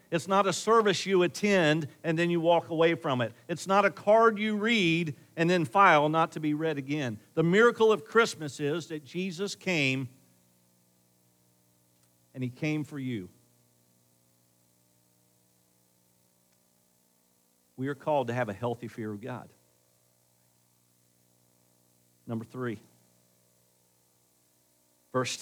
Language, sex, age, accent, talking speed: English, male, 50-69, American, 125 wpm